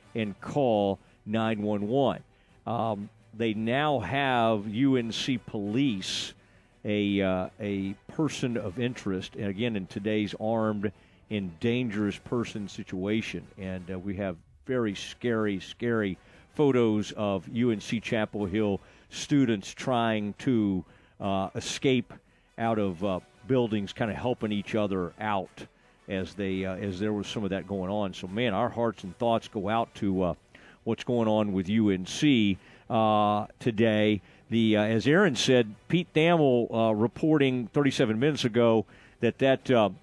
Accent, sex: American, male